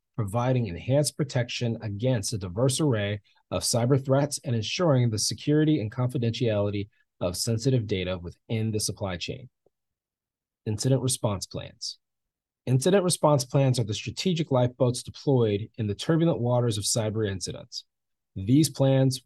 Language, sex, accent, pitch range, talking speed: English, male, American, 105-140 Hz, 135 wpm